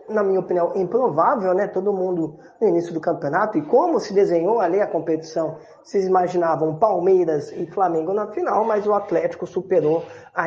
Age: 20-39